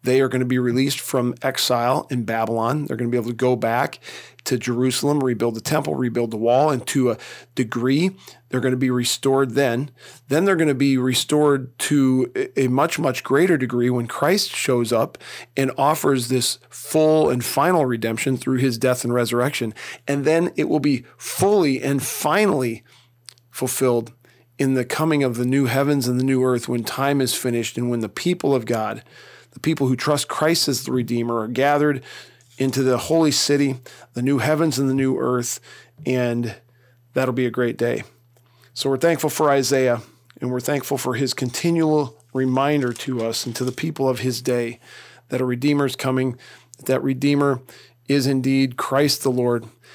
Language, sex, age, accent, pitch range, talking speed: English, male, 40-59, American, 120-140 Hz, 185 wpm